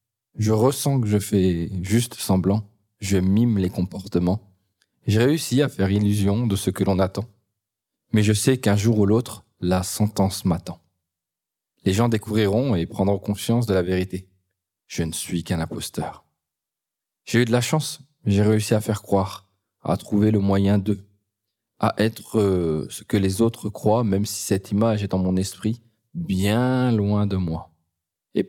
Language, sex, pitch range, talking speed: French, male, 95-115 Hz, 170 wpm